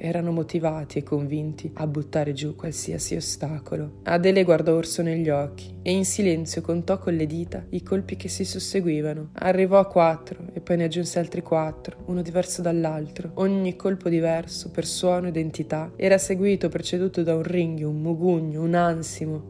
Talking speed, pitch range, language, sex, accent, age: 170 wpm, 155-185 Hz, Italian, female, native, 20-39